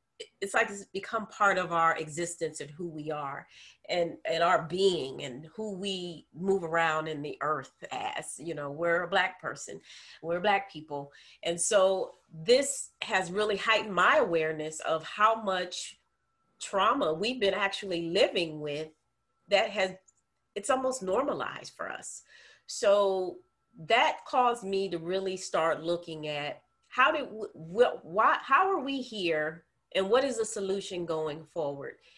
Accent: American